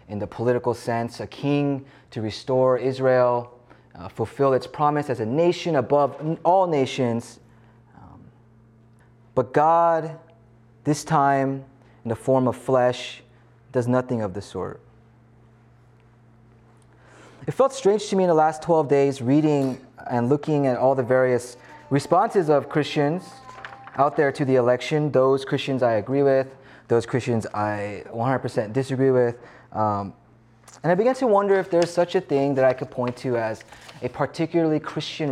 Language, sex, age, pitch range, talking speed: English, male, 20-39, 115-140 Hz, 155 wpm